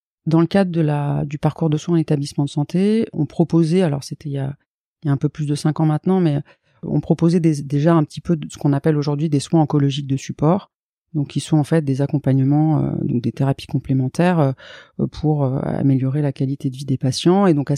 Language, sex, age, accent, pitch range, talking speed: French, female, 30-49, French, 140-170 Hz, 245 wpm